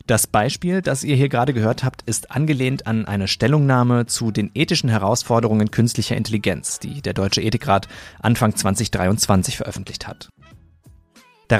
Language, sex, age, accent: German, male, 30-49, German